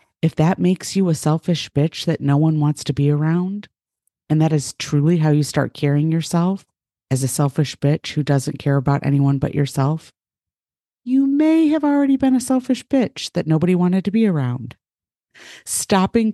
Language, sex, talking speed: English, female, 180 wpm